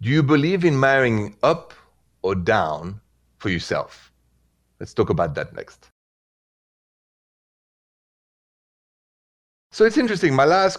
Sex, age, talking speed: male, 30-49, 110 wpm